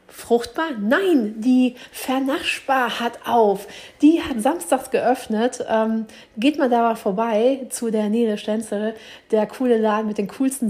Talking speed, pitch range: 135 wpm, 205-265 Hz